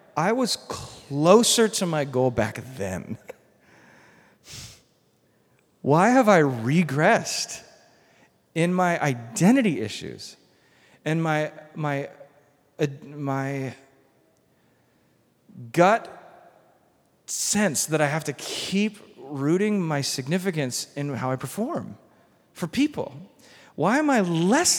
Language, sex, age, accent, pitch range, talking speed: English, male, 40-59, American, 135-205 Hz, 100 wpm